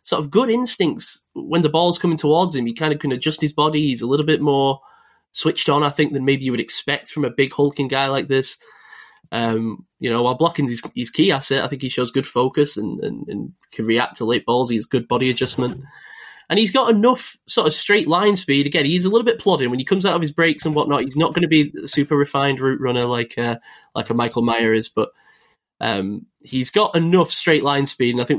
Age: 10-29